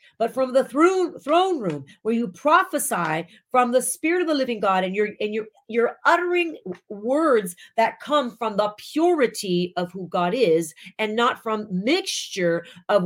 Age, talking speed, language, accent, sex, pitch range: 40-59, 170 wpm, English, American, female, 185-255 Hz